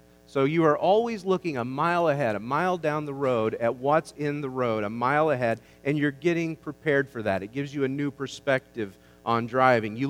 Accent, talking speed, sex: American, 215 wpm, male